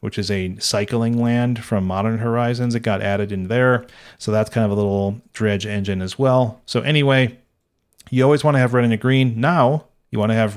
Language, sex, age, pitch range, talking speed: English, male, 40-59, 105-130 Hz, 220 wpm